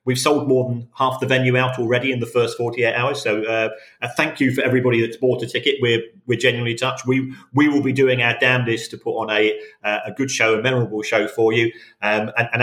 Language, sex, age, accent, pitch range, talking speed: English, male, 40-59, British, 105-125 Hz, 240 wpm